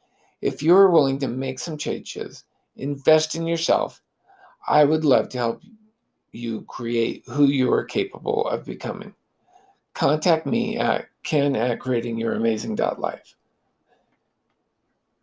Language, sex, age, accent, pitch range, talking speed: English, male, 50-69, American, 125-155 Hz, 115 wpm